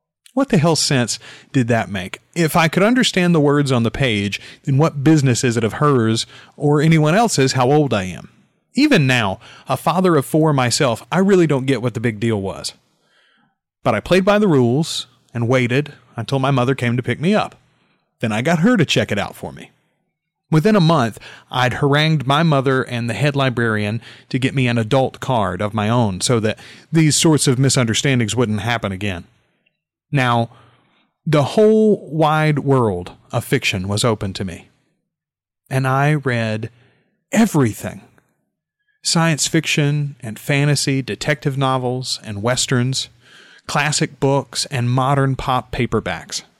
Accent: American